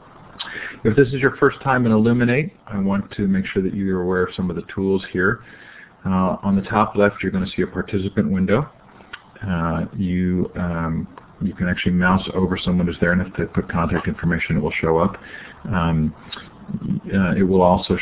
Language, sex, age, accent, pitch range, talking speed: English, male, 40-59, American, 85-100 Hz, 195 wpm